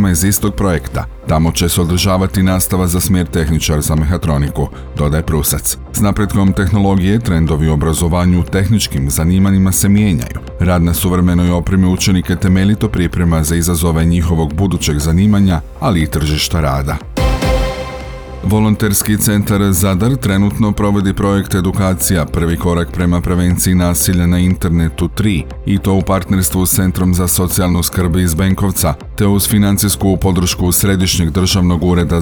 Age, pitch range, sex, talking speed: 40-59, 85-100 Hz, male, 140 wpm